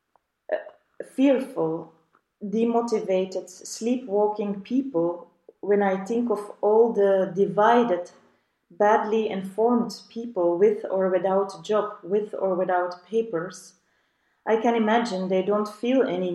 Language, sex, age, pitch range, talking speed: Swedish, female, 30-49, 180-225 Hz, 105 wpm